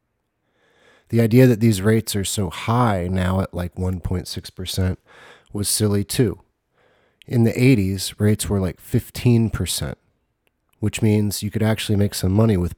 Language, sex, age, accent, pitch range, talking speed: English, male, 30-49, American, 90-110 Hz, 145 wpm